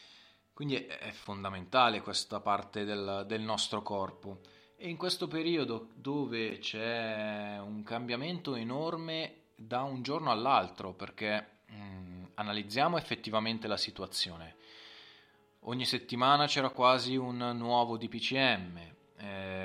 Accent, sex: native, male